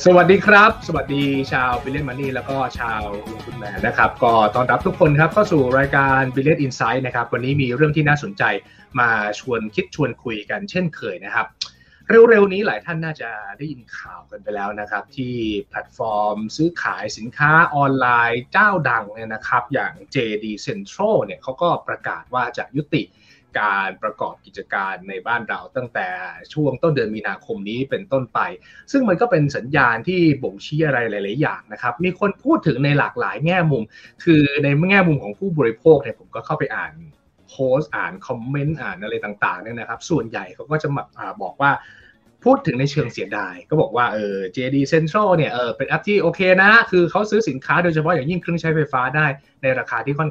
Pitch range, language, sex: 125-175 Hz, Thai, male